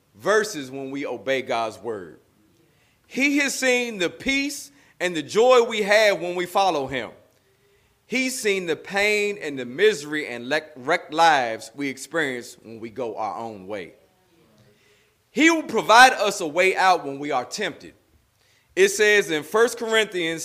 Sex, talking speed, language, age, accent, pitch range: male, 160 wpm, English, 30-49, American, 135-215 Hz